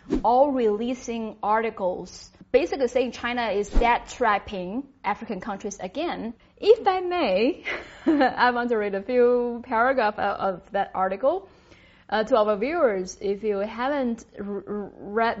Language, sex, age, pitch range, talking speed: English, female, 10-29, 205-255 Hz, 125 wpm